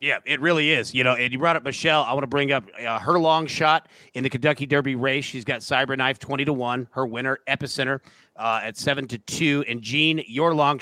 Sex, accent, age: male, American, 40-59